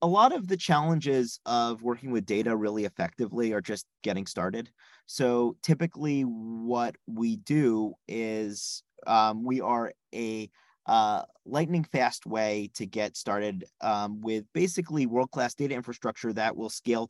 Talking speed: 145 wpm